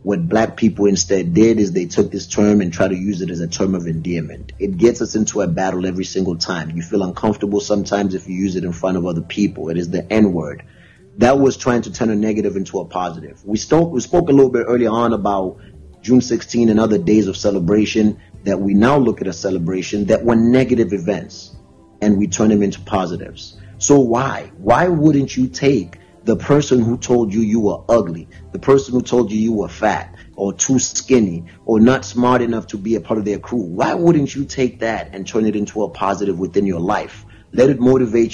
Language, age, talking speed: English, 30-49, 225 wpm